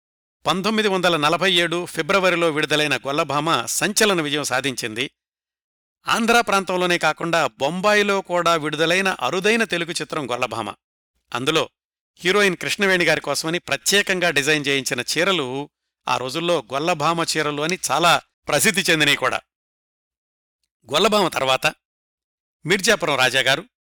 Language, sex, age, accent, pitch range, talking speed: Telugu, male, 60-79, native, 135-180 Hz, 100 wpm